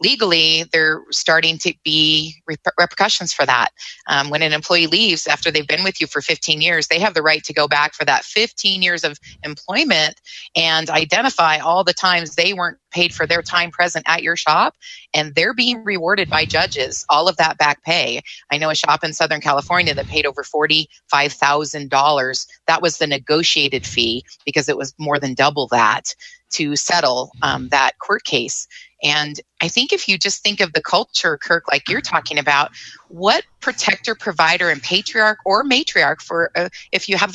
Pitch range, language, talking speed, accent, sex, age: 150-185 Hz, English, 190 wpm, American, female, 30-49